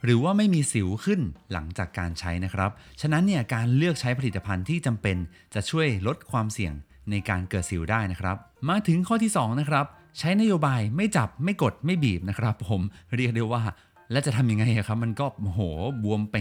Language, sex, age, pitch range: Thai, male, 30-49, 100-145 Hz